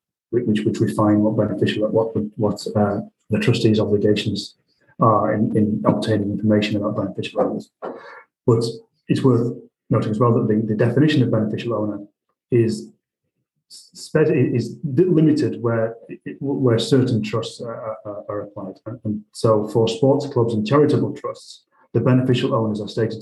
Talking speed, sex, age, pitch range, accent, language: 150 wpm, male, 30-49, 110-125 Hz, British, English